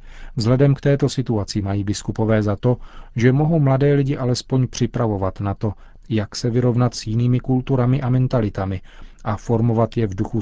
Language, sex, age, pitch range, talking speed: Czech, male, 40-59, 105-125 Hz, 165 wpm